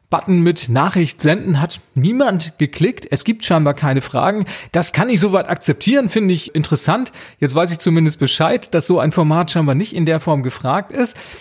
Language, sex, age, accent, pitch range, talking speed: German, male, 40-59, German, 155-190 Hz, 190 wpm